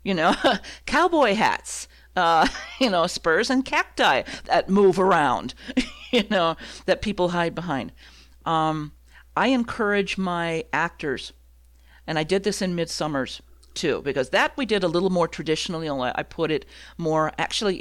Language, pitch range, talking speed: English, 115-185 Hz, 150 wpm